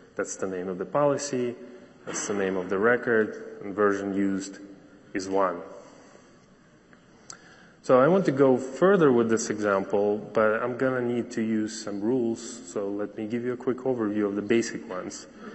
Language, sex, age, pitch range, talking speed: English, male, 20-39, 100-120 Hz, 180 wpm